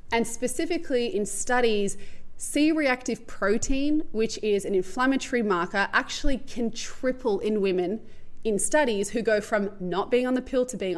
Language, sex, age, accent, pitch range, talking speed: English, female, 20-39, Australian, 195-230 Hz, 155 wpm